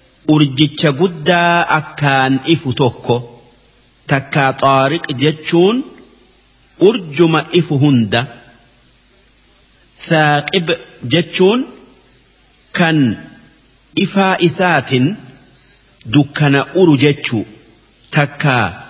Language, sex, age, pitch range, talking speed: Arabic, male, 50-69, 130-170 Hz, 55 wpm